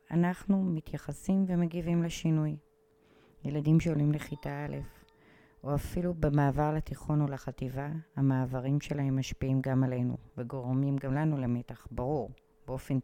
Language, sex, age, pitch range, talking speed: Hebrew, female, 30-49, 130-160 Hz, 115 wpm